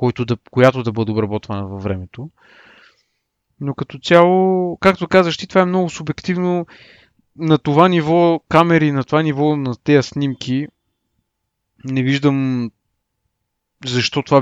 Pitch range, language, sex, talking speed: 120-155 Hz, Bulgarian, male, 125 wpm